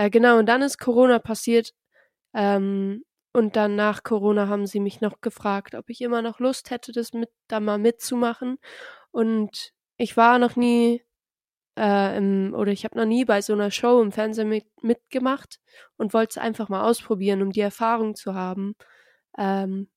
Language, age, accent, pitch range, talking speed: German, 20-39, German, 205-245 Hz, 170 wpm